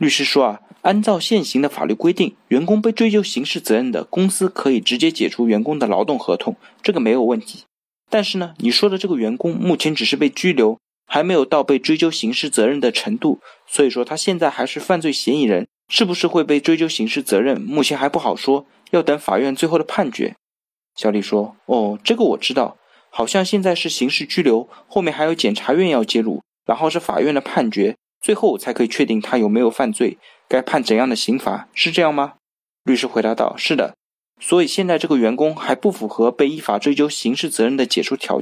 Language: Chinese